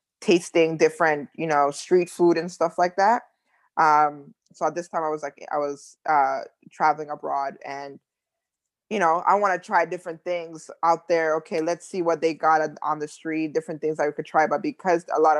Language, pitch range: English, 155-180 Hz